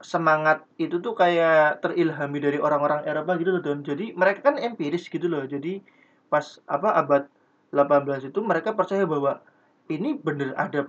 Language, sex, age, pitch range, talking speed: Indonesian, male, 20-39, 145-180 Hz, 160 wpm